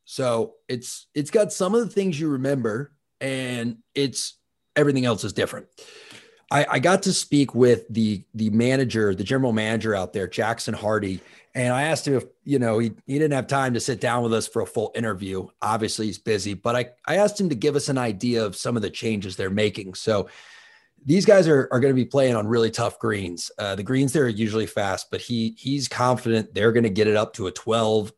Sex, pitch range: male, 110-135 Hz